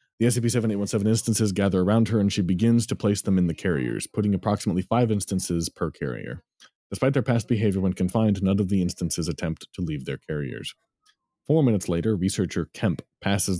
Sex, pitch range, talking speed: male, 90-115 Hz, 185 wpm